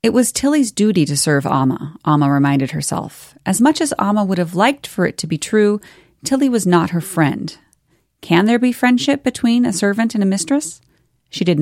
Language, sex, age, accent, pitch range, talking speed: English, female, 30-49, American, 160-210 Hz, 200 wpm